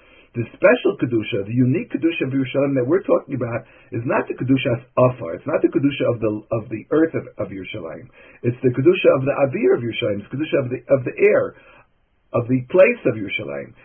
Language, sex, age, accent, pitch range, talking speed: English, male, 50-69, American, 120-155 Hz, 220 wpm